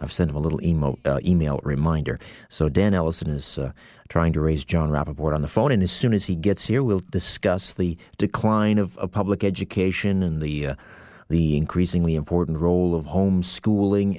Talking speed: 195 wpm